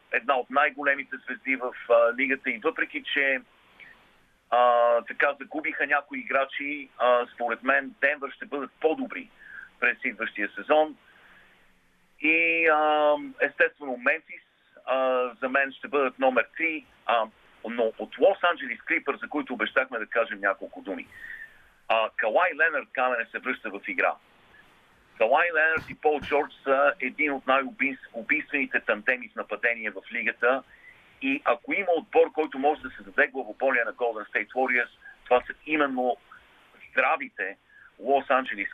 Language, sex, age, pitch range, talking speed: Bulgarian, male, 50-69, 125-155 Hz, 135 wpm